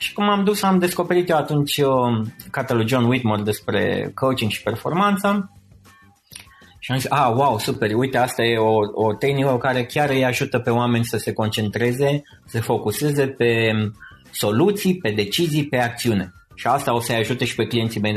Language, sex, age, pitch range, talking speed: Romanian, male, 30-49, 110-150 Hz, 175 wpm